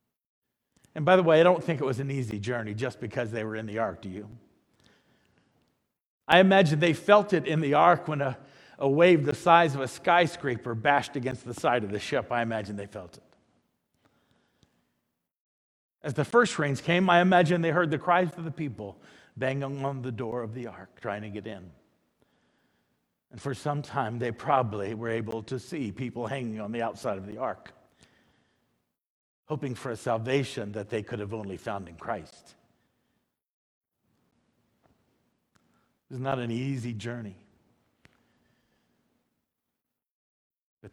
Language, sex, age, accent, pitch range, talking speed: English, male, 50-69, American, 110-155 Hz, 165 wpm